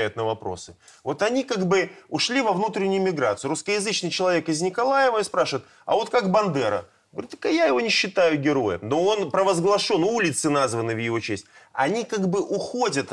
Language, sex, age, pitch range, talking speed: Russian, male, 20-39, 135-180 Hz, 175 wpm